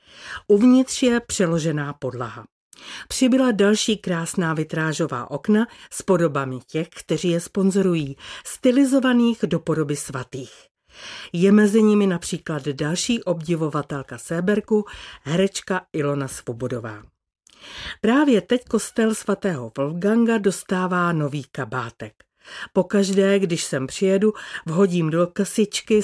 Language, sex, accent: Czech, female, native